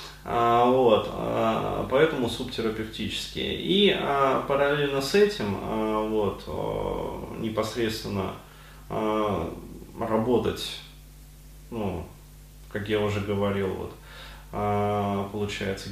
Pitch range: 105-130 Hz